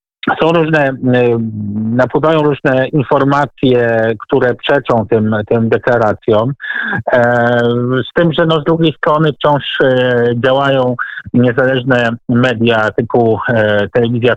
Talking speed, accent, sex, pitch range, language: 90 wpm, native, male, 115-135 Hz, Polish